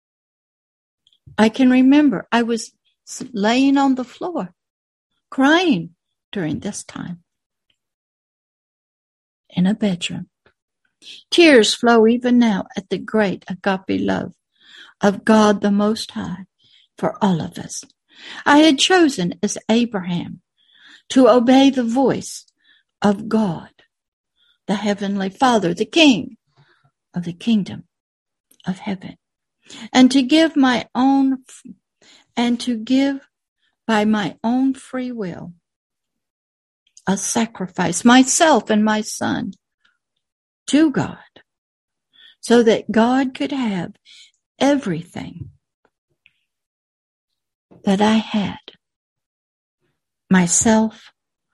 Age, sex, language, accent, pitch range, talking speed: 60-79, female, English, American, 195-265 Hz, 100 wpm